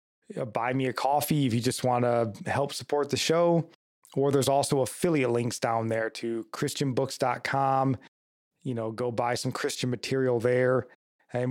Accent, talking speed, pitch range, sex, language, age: American, 160 wpm, 125-145 Hz, male, English, 20-39